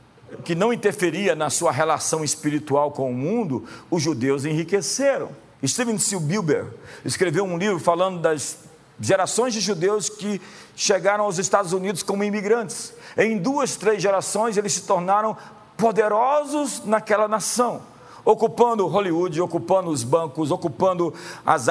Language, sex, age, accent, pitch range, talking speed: Portuguese, male, 50-69, Brazilian, 140-200 Hz, 130 wpm